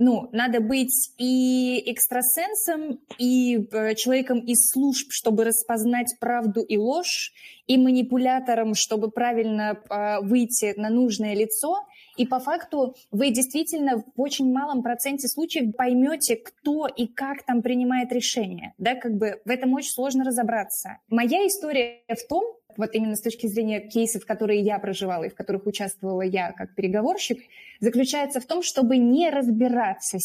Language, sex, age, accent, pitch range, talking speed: Russian, female, 20-39, native, 225-270 Hz, 145 wpm